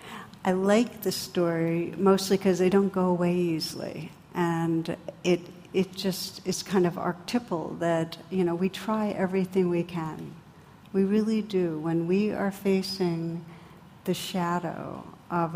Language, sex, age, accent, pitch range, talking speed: English, female, 60-79, American, 170-190 Hz, 145 wpm